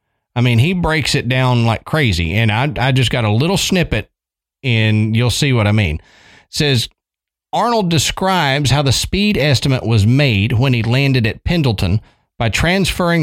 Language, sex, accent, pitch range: English, male, American, 110-155 Hz